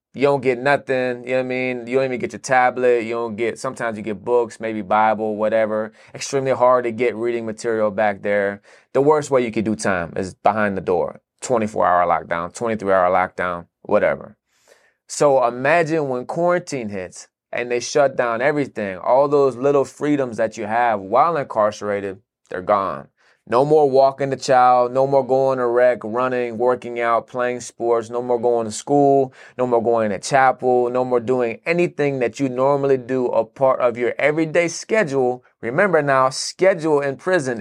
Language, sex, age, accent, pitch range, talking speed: English, male, 20-39, American, 115-140 Hz, 180 wpm